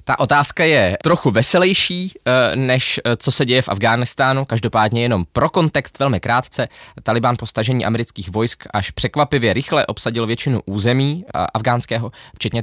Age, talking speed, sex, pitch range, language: 20-39, 145 wpm, male, 110-145 Hz, Czech